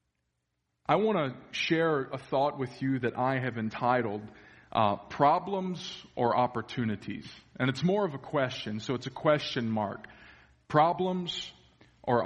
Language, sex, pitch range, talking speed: English, male, 115-140 Hz, 140 wpm